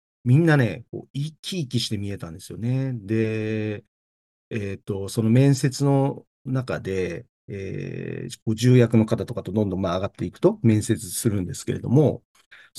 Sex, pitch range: male, 105-145 Hz